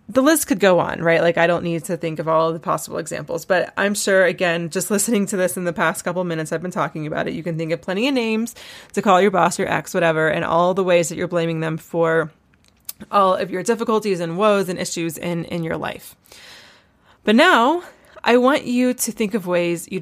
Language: English